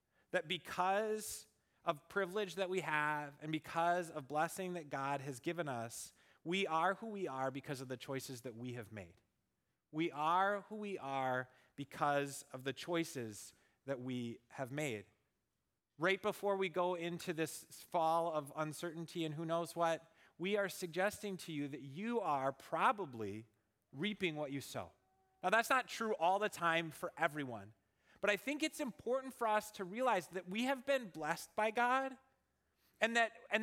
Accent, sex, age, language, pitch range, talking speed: American, male, 30-49, English, 145-205 Hz, 170 wpm